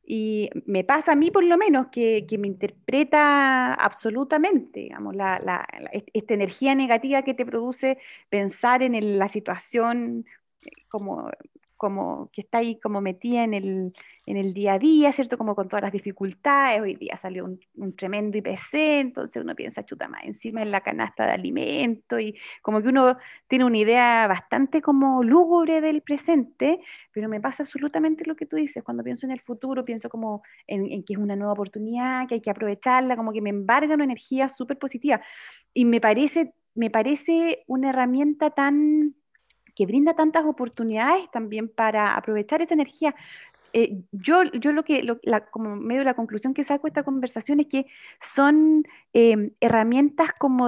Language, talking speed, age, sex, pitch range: Spanish, 180 wpm, 30-49, female, 220-300 Hz